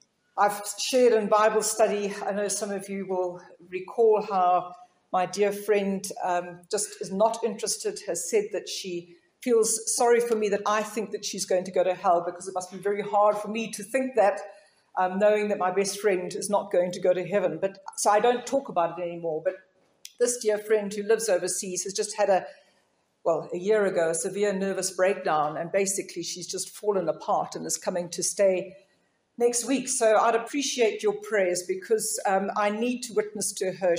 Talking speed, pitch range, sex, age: 205 wpm, 190-225 Hz, female, 50-69